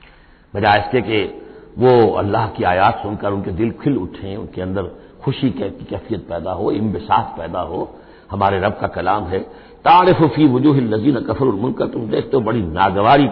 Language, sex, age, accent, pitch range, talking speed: Hindi, male, 60-79, native, 105-150 Hz, 155 wpm